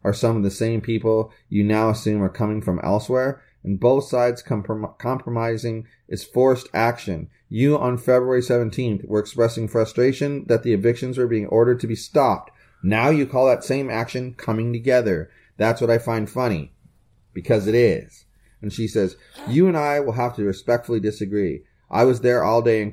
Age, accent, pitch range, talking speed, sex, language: 30-49, American, 115-145 Hz, 180 wpm, male, English